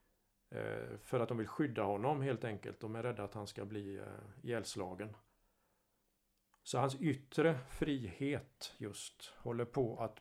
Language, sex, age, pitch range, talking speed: Swedish, male, 50-69, 105-130 Hz, 140 wpm